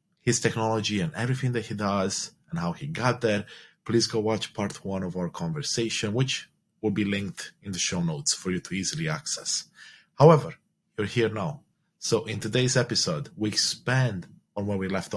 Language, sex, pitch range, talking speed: English, male, 105-150 Hz, 185 wpm